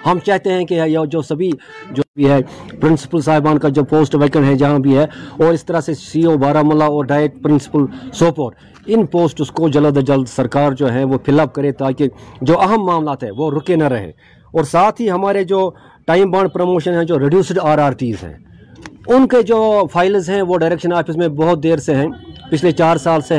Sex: male